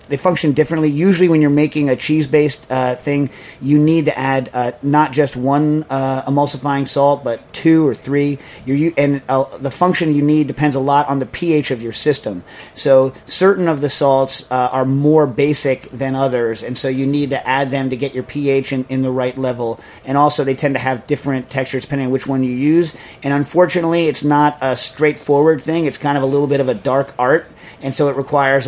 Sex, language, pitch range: male, English, 130-150 Hz